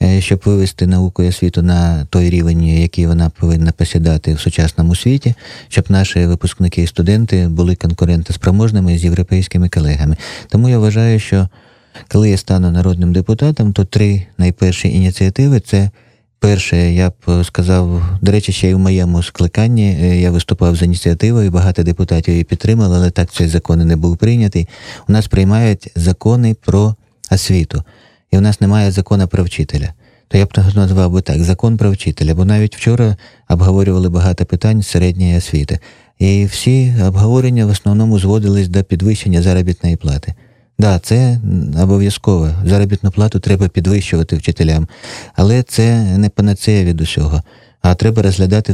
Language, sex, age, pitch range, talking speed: Russian, male, 30-49, 90-105 Hz, 155 wpm